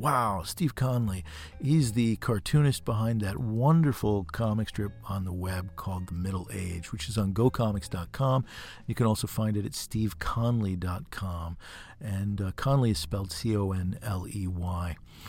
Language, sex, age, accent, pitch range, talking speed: English, male, 50-69, American, 95-120 Hz, 135 wpm